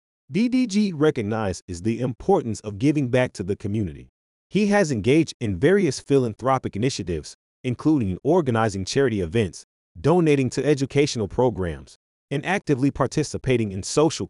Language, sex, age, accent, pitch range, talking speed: English, male, 30-49, American, 100-140 Hz, 125 wpm